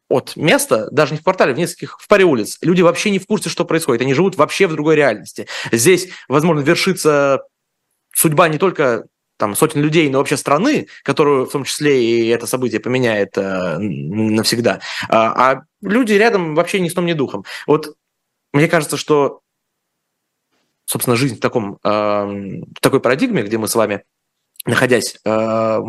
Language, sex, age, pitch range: Russian, male, 20-39, 110-165 Hz